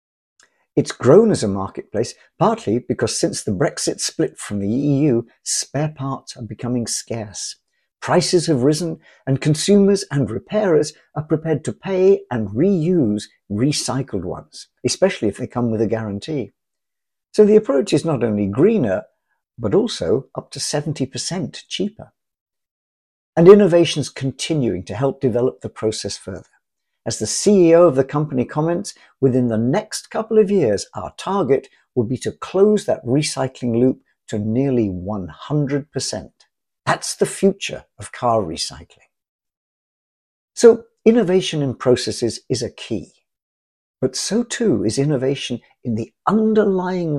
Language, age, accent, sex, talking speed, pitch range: English, 50-69, British, male, 140 wpm, 115-170 Hz